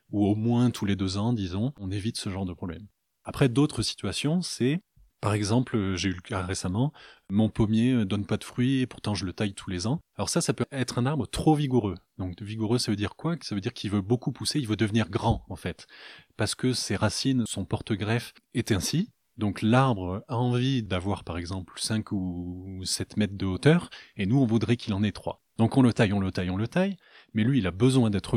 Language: French